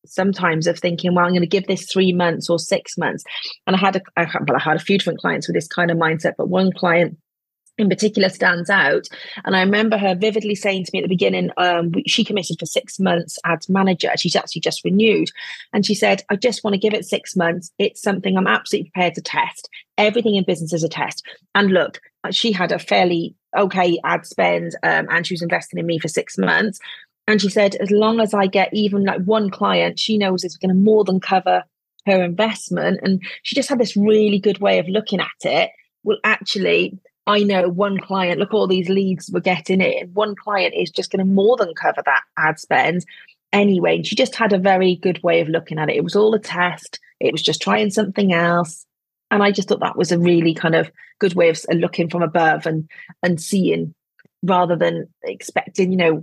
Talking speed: 225 wpm